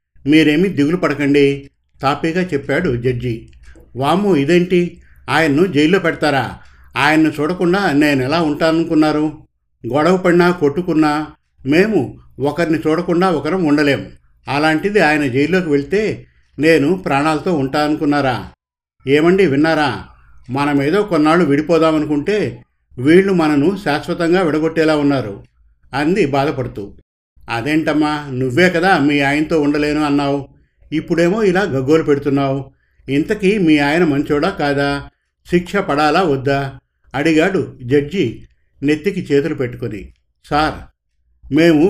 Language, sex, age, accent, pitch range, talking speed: Telugu, male, 50-69, native, 135-165 Hz, 100 wpm